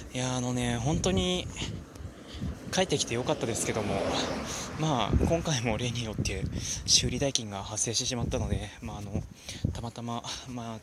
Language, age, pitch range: Japanese, 20-39, 110-145 Hz